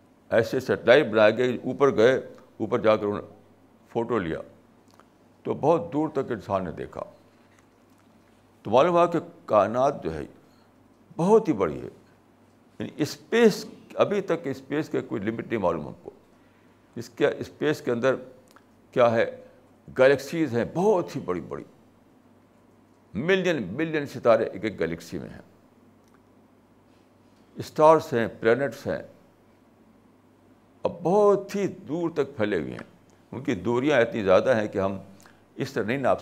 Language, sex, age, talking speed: Urdu, male, 60-79, 140 wpm